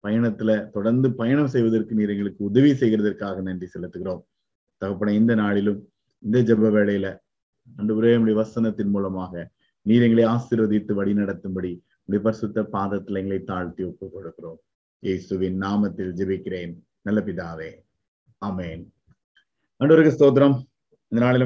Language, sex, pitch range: Tamil, male, 95-115 Hz